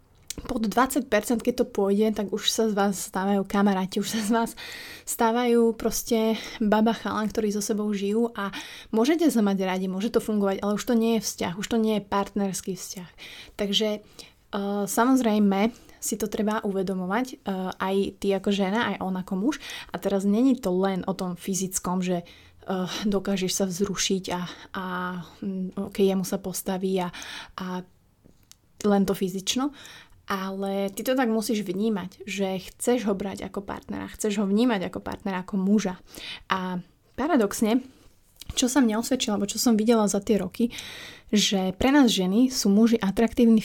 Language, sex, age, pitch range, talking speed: Slovak, female, 20-39, 195-230 Hz, 165 wpm